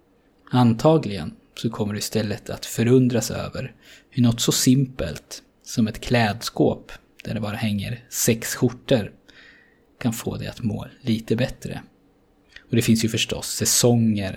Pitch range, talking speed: 105-125 Hz, 140 wpm